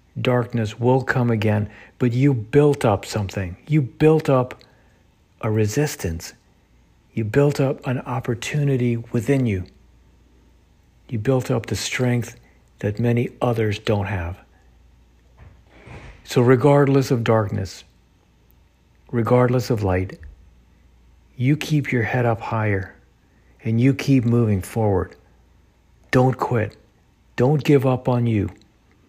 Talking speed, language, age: 115 wpm, English, 60-79